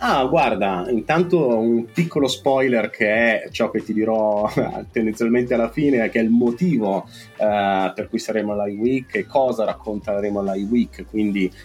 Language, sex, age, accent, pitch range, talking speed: Italian, male, 30-49, native, 105-130 Hz, 150 wpm